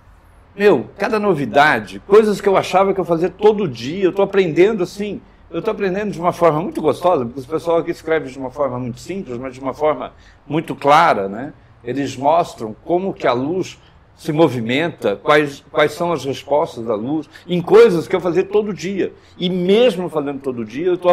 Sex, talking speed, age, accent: male, 200 wpm, 60-79, Brazilian